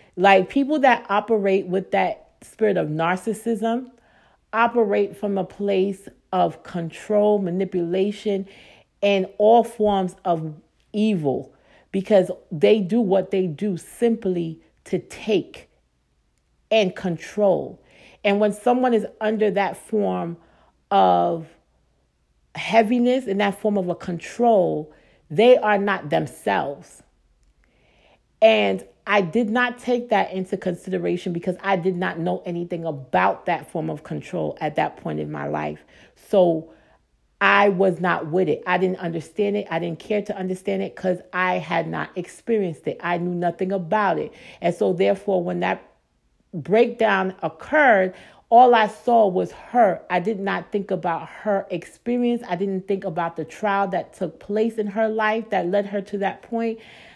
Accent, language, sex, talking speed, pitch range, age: American, English, female, 145 wpm, 175-215 Hz, 40-59